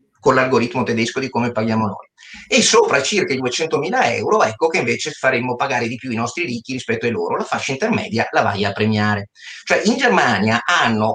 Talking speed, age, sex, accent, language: 200 wpm, 30-49, male, native, Italian